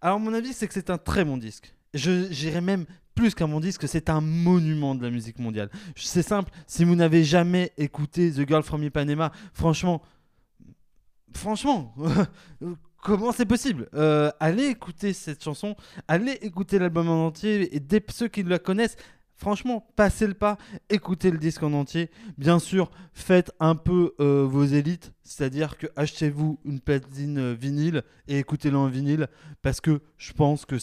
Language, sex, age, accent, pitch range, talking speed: French, male, 20-39, French, 140-180 Hz, 170 wpm